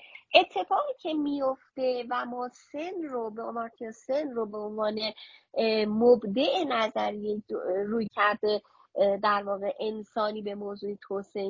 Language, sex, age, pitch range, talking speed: Persian, female, 30-49, 220-295 Hz, 100 wpm